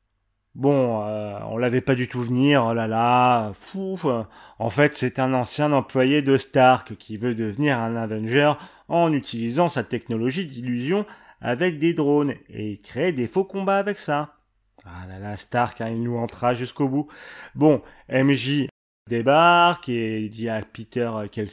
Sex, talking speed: male, 160 wpm